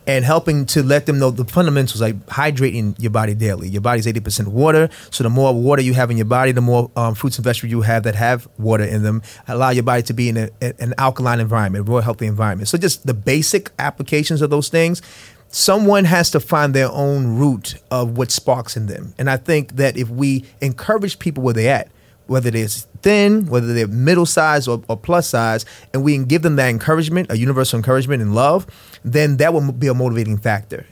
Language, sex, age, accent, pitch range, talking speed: English, male, 30-49, American, 115-150 Hz, 220 wpm